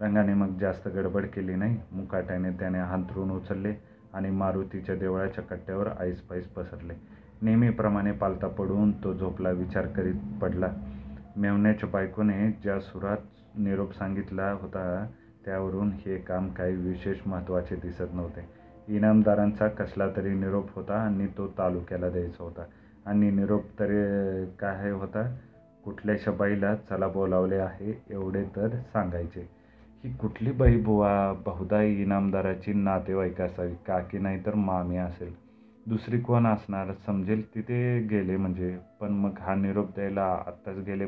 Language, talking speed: Marathi, 130 wpm